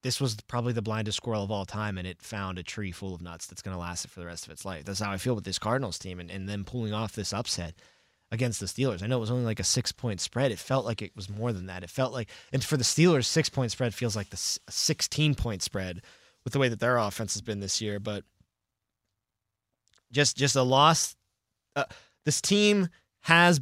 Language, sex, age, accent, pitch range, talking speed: English, male, 20-39, American, 100-135 Hz, 245 wpm